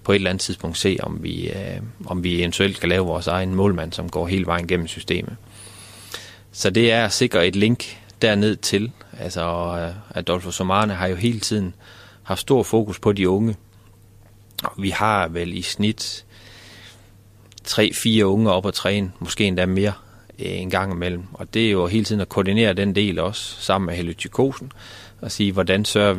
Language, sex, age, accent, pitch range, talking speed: Danish, male, 30-49, native, 90-105 Hz, 185 wpm